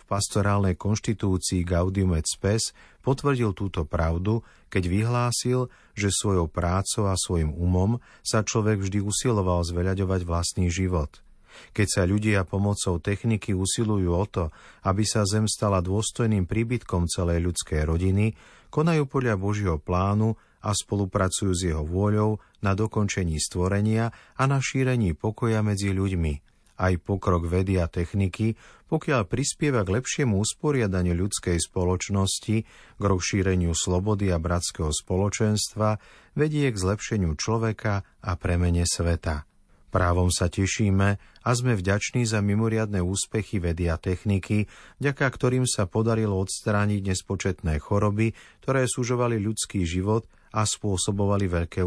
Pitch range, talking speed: 90-110 Hz, 125 wpm